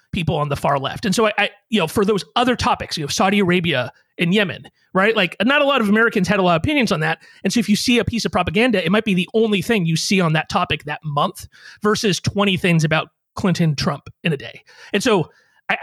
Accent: American